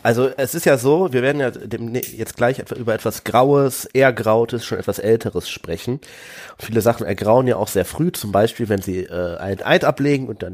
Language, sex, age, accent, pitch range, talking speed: German, male, 30-49, German, 110-145 Hz, 215 wpm